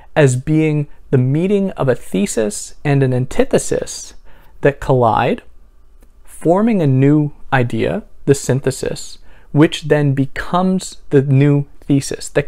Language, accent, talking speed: English, American, 120 wpm